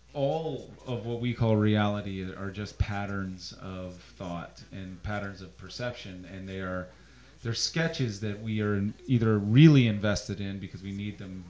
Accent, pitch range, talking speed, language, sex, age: American, 90-120 Hz, 165 wpm, English, male, 30-49